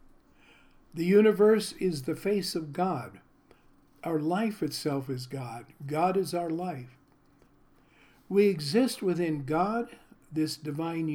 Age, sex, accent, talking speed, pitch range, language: 60-79, male, American, 120 wpm, 150-195 Hz, English